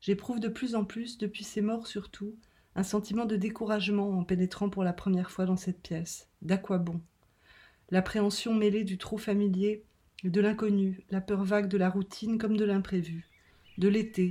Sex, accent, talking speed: female, French, 180 wpm